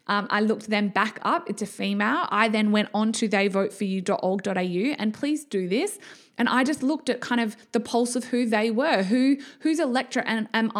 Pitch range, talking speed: 210-260 Hz, 200 wpm